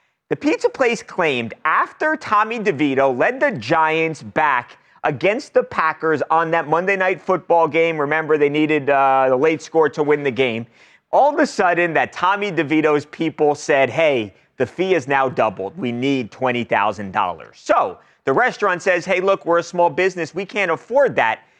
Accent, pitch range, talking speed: American, 120-170 Hz, 175 wpm